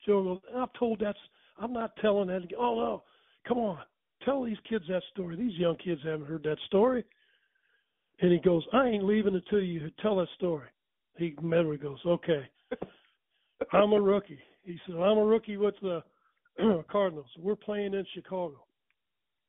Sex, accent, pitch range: male, American, 170-205 Hz